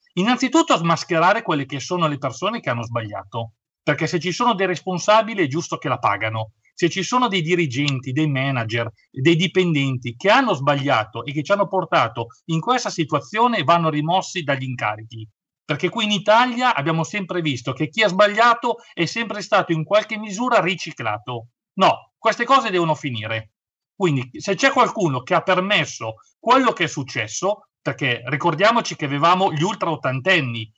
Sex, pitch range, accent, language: male, 140-200 Hz, native, Italian